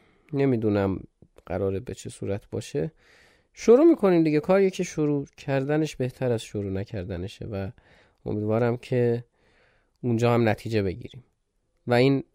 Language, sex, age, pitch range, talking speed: Persian, male, 30-49, 110-160 Hz, 125 wpm